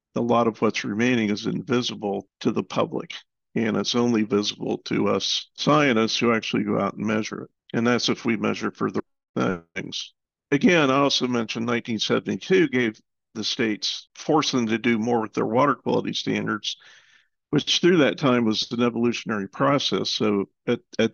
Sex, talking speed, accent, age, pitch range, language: male, 175 wpm, American, 50-69, 110-125 Hz, English